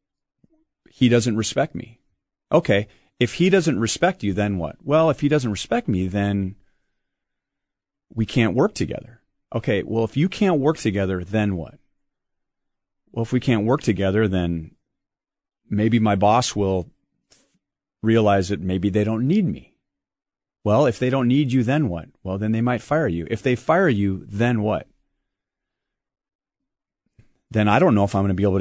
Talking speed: 170 wpm